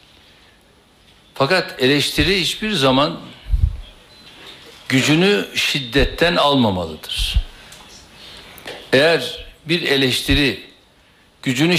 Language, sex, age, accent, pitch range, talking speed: Turkish, male, 60-79, native, 130-170 Hz, 55 wpm